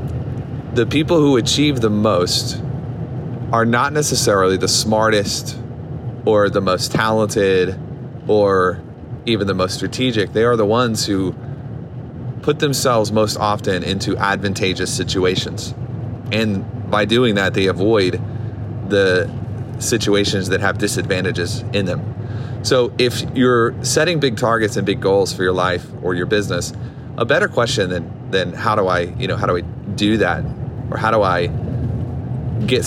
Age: 30-49